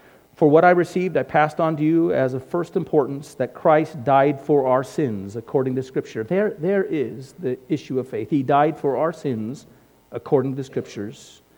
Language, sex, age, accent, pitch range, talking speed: English, male, 40-59, American, 125-160 Hz, 195 wpm